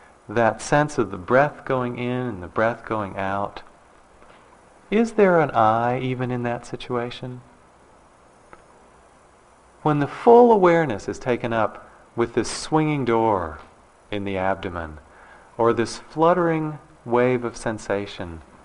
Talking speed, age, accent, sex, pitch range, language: 130 wpm, 40-59, American, male, 95-150 Hz, English